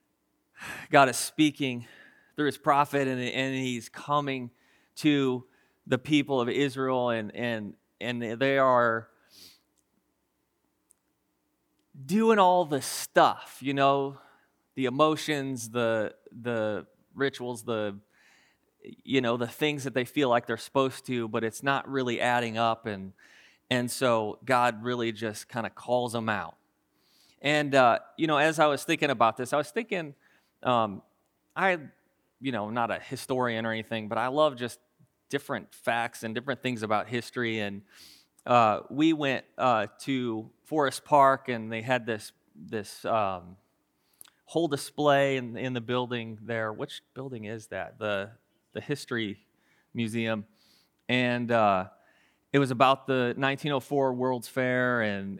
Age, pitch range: 30-49, 115-140 Hz